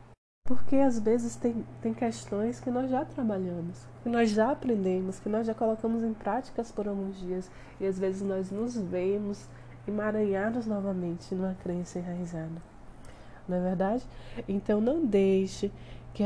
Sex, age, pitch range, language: female, 20-39, 180-225 Hz, Portuguese